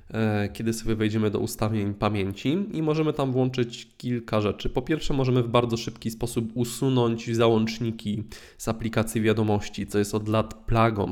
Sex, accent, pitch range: male, native, 105-125 Hz